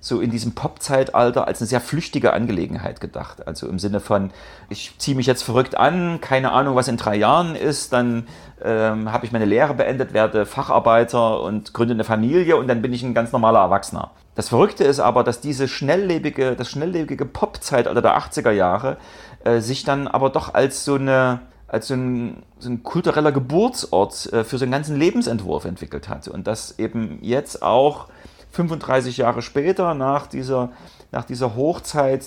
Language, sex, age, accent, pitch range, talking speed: German, male, 40-59, German, 115-140 Hz, 180 wpm